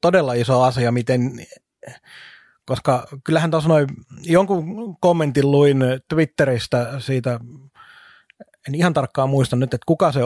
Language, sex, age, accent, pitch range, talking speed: Finnish, male, 30-49, native, 130-155 Hz, 115 wpm